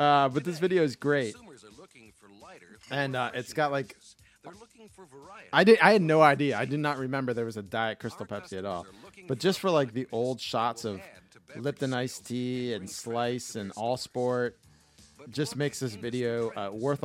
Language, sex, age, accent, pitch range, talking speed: English, male, 30-49, American, 115-150 Hz, 180 wpm